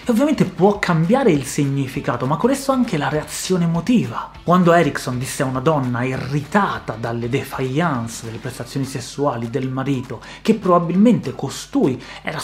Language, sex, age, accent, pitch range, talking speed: Italian, male, 30-49, native, 130-185 Hz, 150 wpm